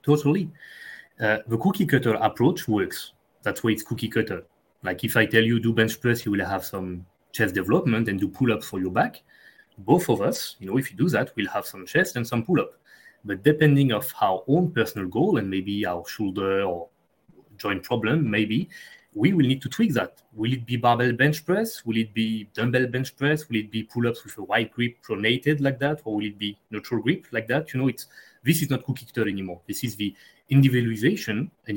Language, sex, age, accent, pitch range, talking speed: English, male, 30-49, French, 105-130 Hz, 215 wpm